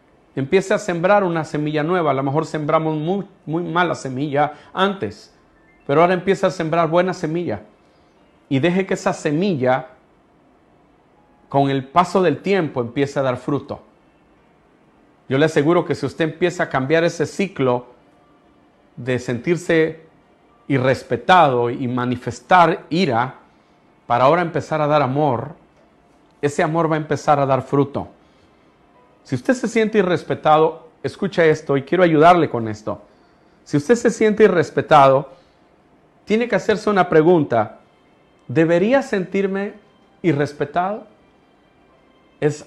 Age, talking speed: 40-59, 130 wpm